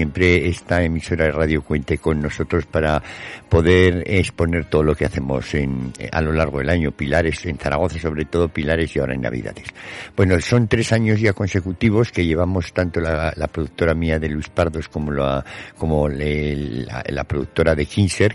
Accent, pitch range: Spanish, 75-100 Hz